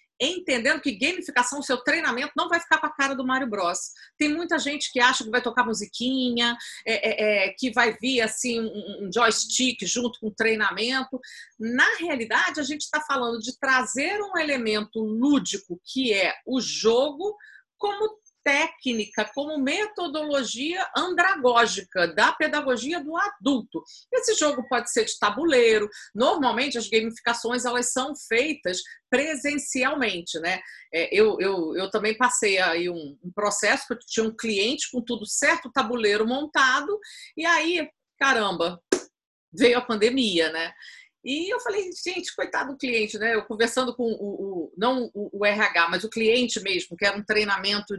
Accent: Brazilian